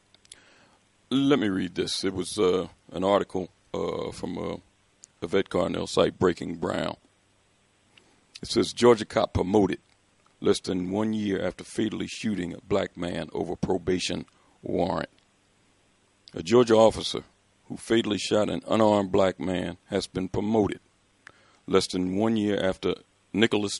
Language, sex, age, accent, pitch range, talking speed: English, male, 50-69, American, 95-100 Hz, 135 wpm